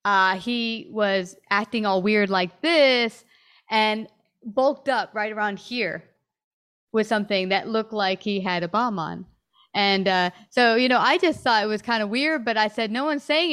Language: English